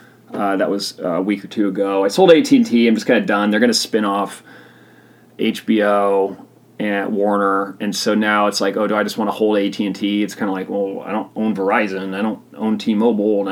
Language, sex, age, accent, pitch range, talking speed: English, male, 30-49, American, 100-130 Hz, 235 wpm